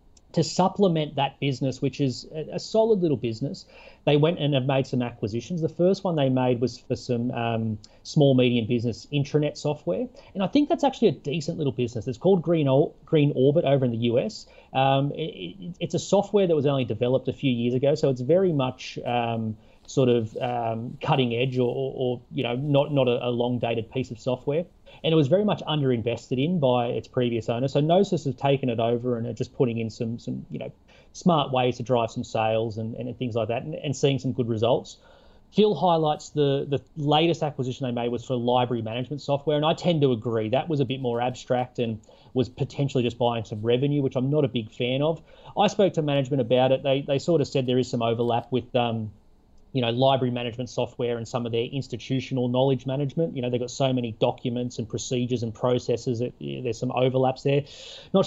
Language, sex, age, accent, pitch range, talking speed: English, male, 30-49, Australian, 120-145 Hz, 220 wpm